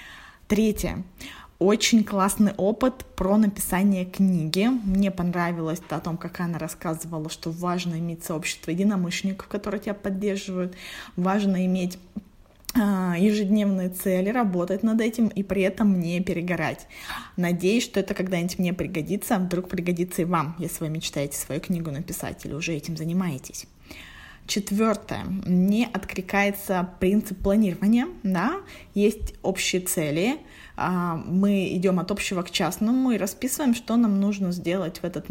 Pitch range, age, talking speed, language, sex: 170-205 Hz, 20-39, 135 wpm, Russian, female